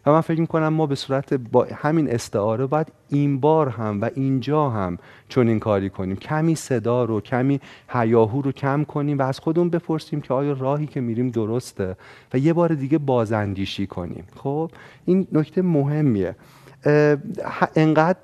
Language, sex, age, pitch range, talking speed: Persian, male, 30-49, 115-150 Hz, 160 wpm